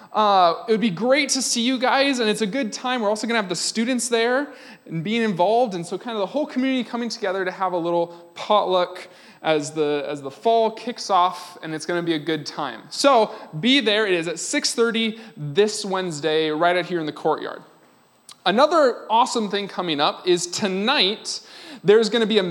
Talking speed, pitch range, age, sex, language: 215 wpm, 175-240 Hz, 20-39, male, English